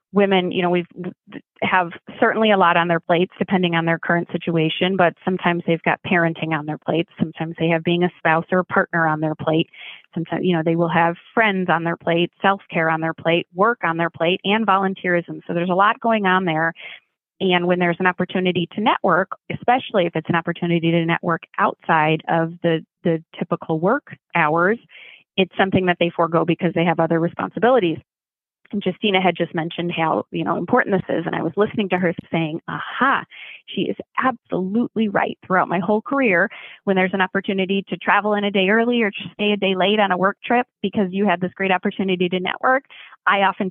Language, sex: English, female